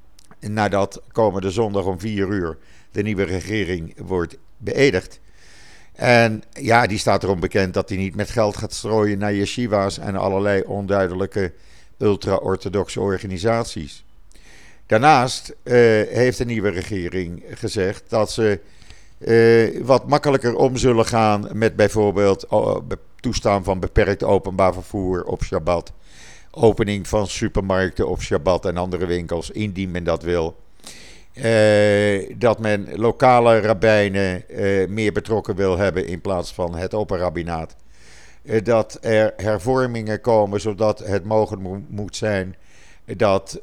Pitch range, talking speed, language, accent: 95-110 Hz, 130 wpm, Dutch, Dutch